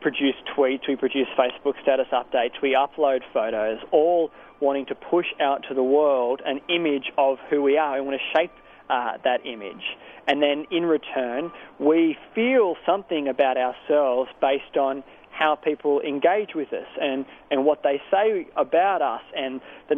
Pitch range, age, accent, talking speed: 135-155 Hz, 20-39, Australian, 170 wpm